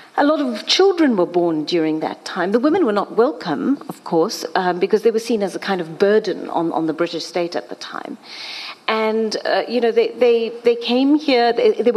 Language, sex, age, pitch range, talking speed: English, female, 40-59, 180-250 Hz, 220 wpm